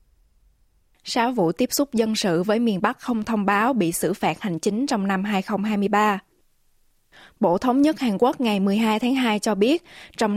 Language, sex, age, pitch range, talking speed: Vietnamese, female, 20-39, 180-225 Hz, 185 wpm